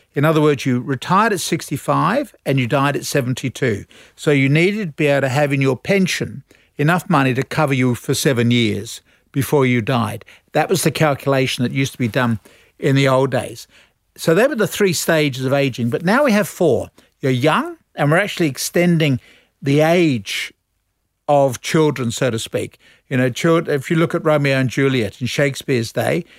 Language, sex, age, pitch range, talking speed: English, male, 60-79, 130-165 Hz, 195 wpm